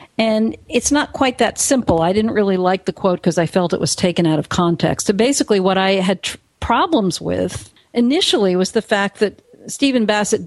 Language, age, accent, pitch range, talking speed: English, 50-69, American, 180-225 Hz, 205 wpm